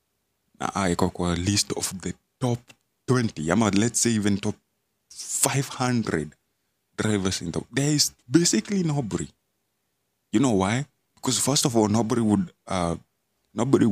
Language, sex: Swahili, male